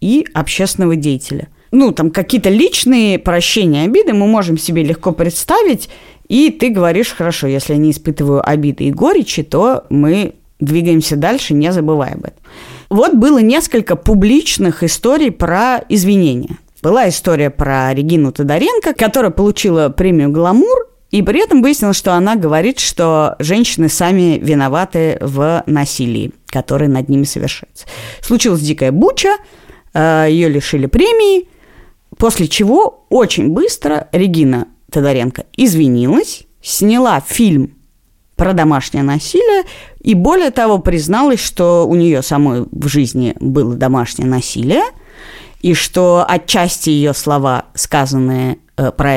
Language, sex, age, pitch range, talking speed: Russian, female, 30-49, 145-220 Hz, 125 wpm